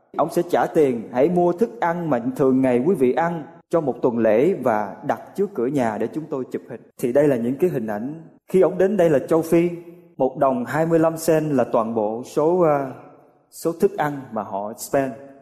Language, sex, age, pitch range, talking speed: Vietnamese, male, 20-39, 135-195 Hz, 220 wpm